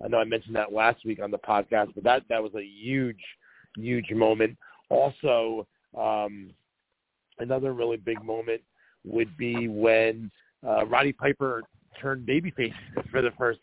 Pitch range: 110-135 Hz